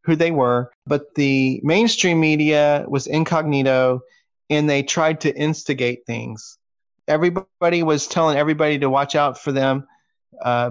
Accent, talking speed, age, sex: American, 140 wpm, 40-59, male